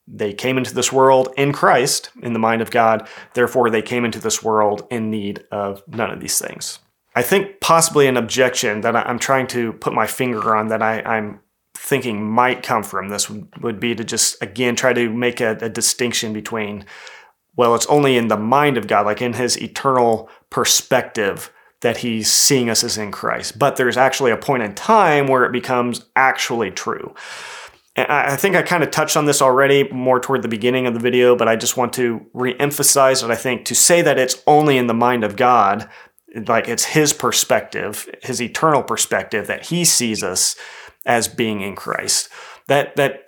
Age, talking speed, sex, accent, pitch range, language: 30-49, 195 wpm, male, American, 115-135 Hz, English